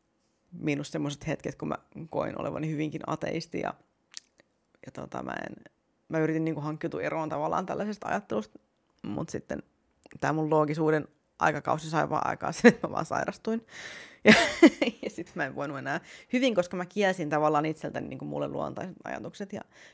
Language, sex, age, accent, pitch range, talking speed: Finnish, female, 30-49, native, 150-185 Hz, 160 wpm